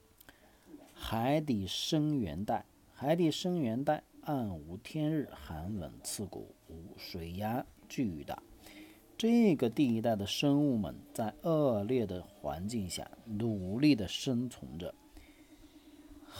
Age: 50-69